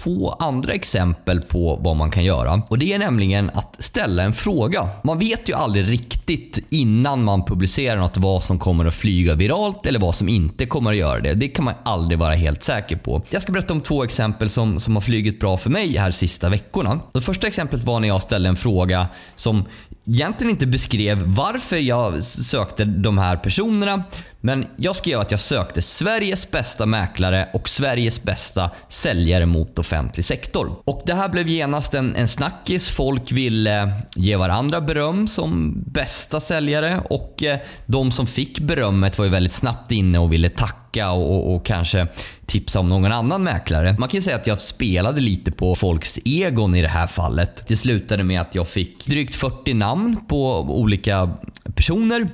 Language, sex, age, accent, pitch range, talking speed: Swedish, male, 20-39, native, 95-135 Hz, 185 wpm